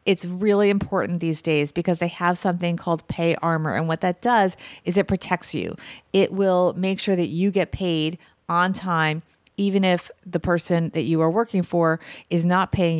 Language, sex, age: English, female, 30-49